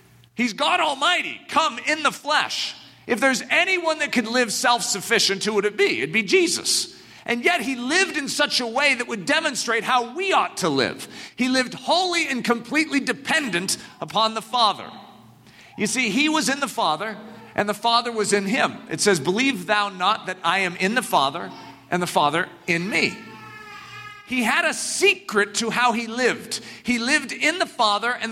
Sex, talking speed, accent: male, 190 wpm, American